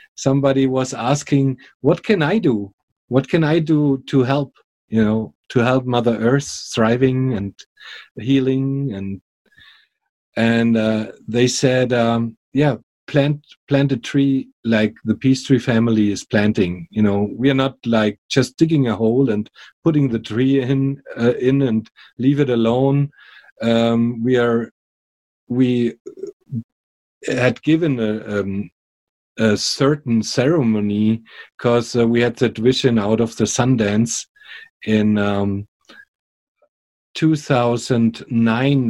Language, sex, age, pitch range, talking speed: English, male, 40-59, 110-135 Hz, 130 wpm